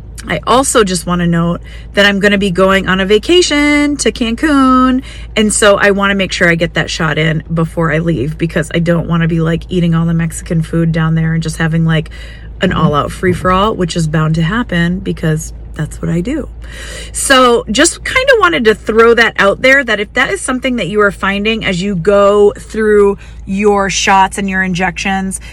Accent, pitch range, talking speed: American, 180-225 Hz, 210 wpm